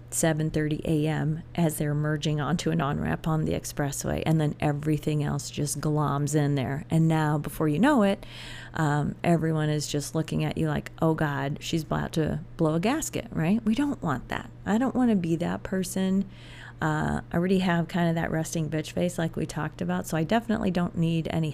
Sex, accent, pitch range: female, American, 150-175 Hz